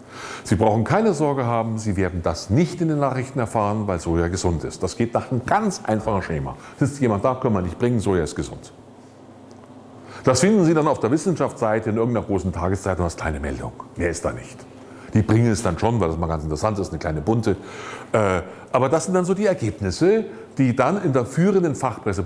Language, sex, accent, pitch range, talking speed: German, male, German, 95-135 Hz, 220 wpm